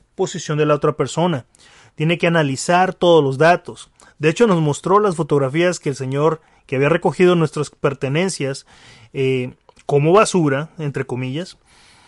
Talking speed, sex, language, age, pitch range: 150 wpm, male, Spanish, 30-49, 145-190 Hz